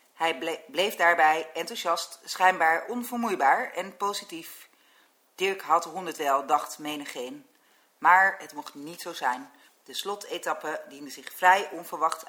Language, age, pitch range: Dutch, 40-59, 165-200 Hz